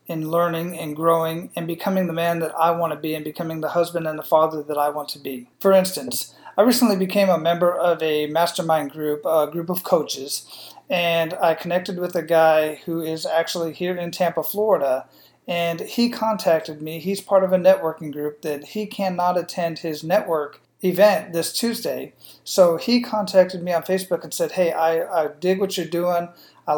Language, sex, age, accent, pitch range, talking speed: English, male, 40-59, American, 160-200 Hz, 195 wpm